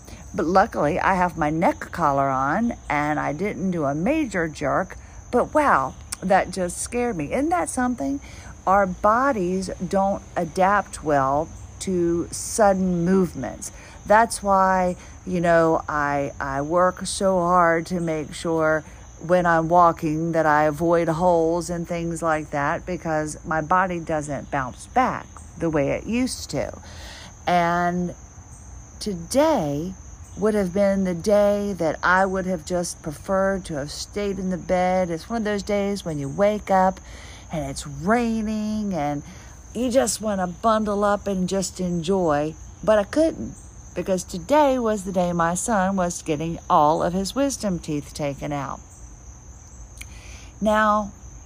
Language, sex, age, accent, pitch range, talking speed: English, female, 50-69, American, 150-195 Hz, 150 wpm